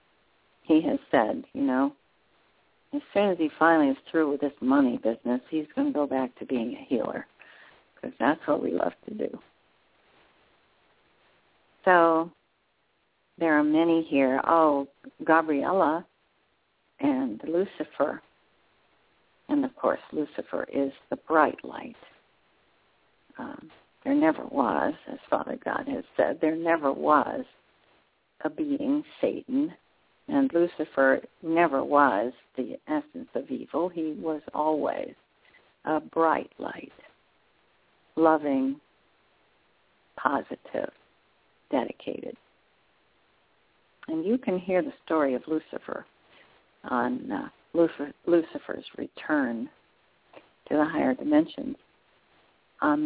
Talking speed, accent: 110 wpm, American